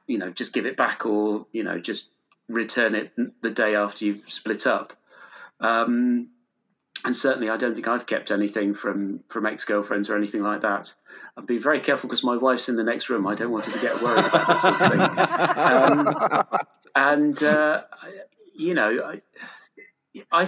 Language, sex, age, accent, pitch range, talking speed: English, male, 30-49, British, 110-145 Hz, 185 wpm